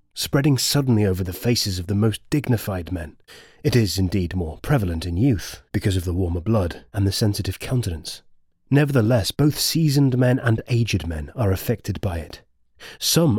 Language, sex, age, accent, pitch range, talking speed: English, male, 30-49, British, 95-125 Hz, 170 wpm